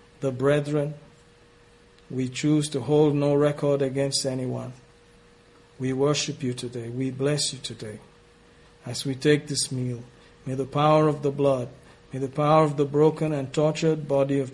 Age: 50-69